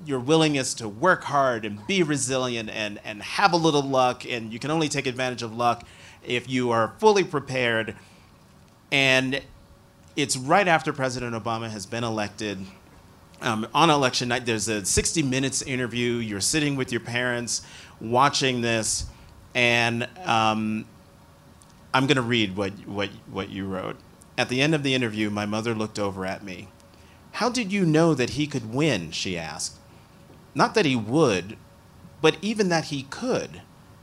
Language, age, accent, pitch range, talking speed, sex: English, 30-49, American, 110-145 Hz, 165 wpm, male